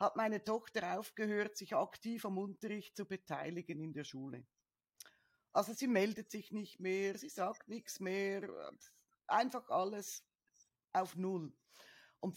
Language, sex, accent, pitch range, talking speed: German, female, Austrian, 165-220 Hz, 135 wpm